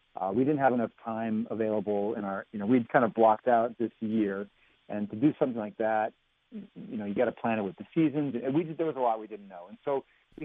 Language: English